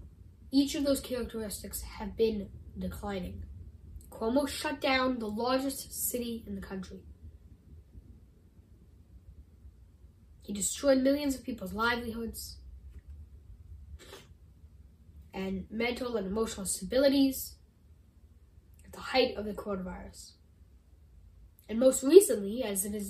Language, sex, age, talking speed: English, female, 10-29, 100 wpm